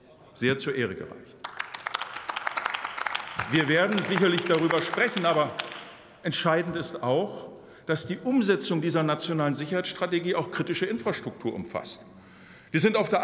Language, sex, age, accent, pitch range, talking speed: German, male, 50-69, German, 150-195 Hz, 120 wpm